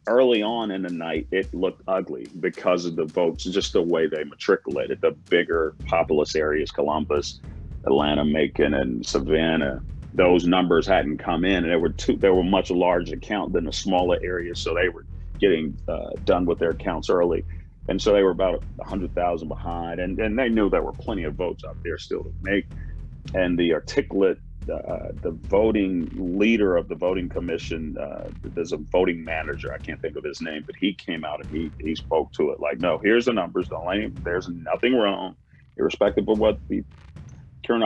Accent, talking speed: American, 200 wpm